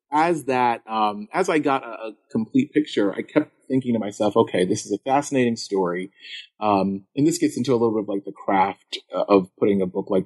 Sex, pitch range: male, 100-130 Hz